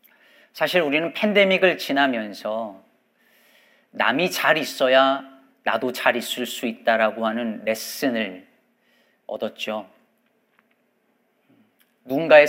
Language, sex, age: Korean, male, 40-59